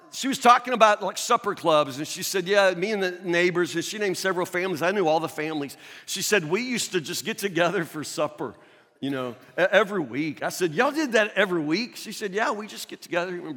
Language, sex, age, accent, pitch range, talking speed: English, male, 50-69, American, 175-245 Hz, 240 wpm